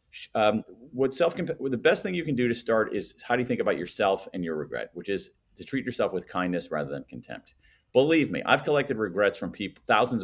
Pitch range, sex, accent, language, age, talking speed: 90-145 Hz, male, American, English, 40-59, 225 wpm